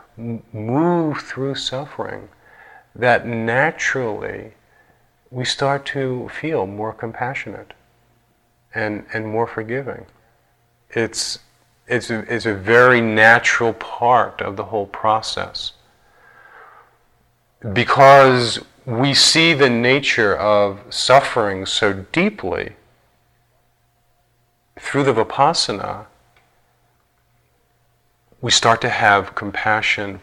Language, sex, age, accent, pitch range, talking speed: English, male, 40-59, American, 110-125 Hz, 85 wpm